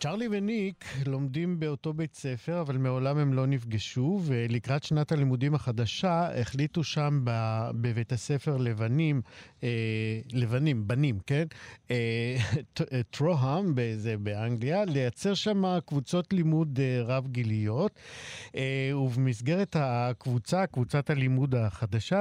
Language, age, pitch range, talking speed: Hebrew, 50-69, 120-150 Hz, 105 wpm